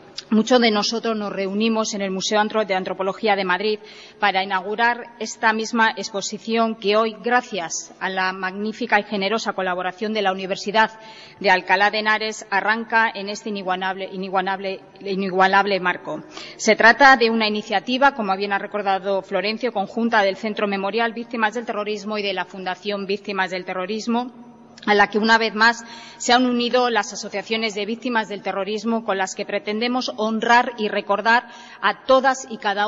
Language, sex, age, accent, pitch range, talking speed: Spanish, female, 20-39, Spanish, 195-225 Hz, 165 wpm